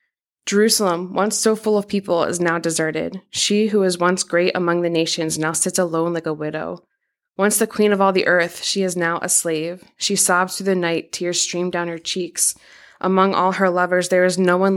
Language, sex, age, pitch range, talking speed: English, female, 20-39, 175-195 Hz, 215 wpm